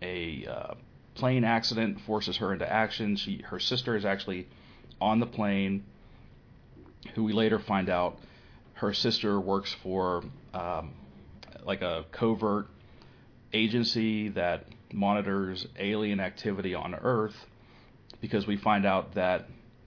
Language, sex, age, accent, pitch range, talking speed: English, male, 40-59, American, 95-115 Hz, 125 wpm